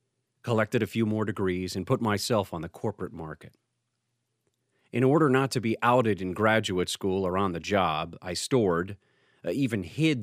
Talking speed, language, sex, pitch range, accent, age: 175 wpm, English, male, 90-120 Hz, American, 40-59